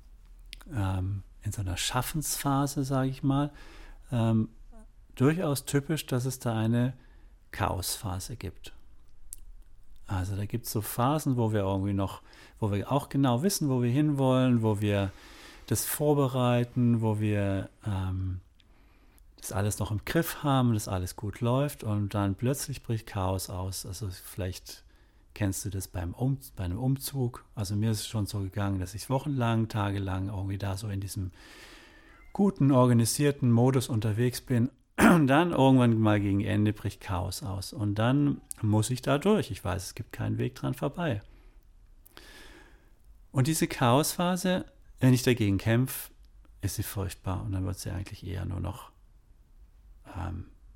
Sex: male